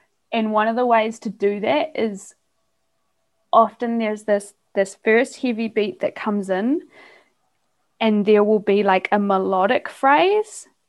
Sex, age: female, 20-39